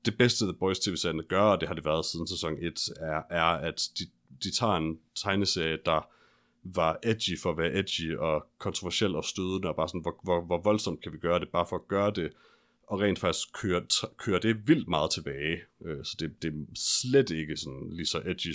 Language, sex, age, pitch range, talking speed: Danish, male, 30-49, 80-95 Hz, 220 wpm